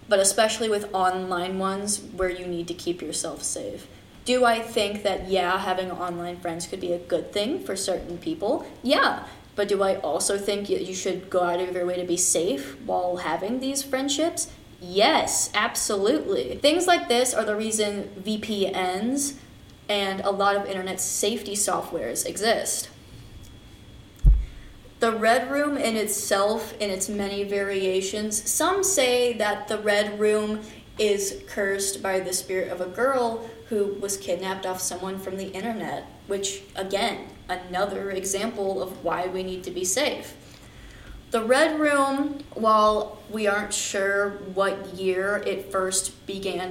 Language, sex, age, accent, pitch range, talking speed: English, female, 20-39, American, 185-215 Hz, 155 wpm